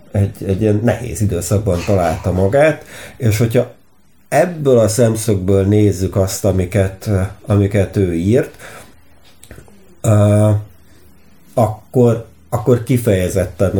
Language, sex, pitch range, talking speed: English, male, 95-115 Hz, 90 wpm